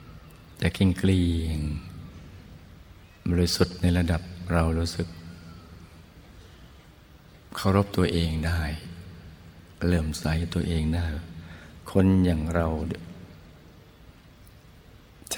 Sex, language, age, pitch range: male, Thai, 60-79, 85-95 Hz